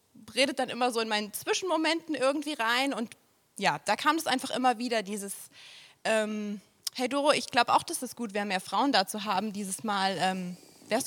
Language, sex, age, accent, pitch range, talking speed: German, female, 20-39, German, 210-260 Hz, 200 wpm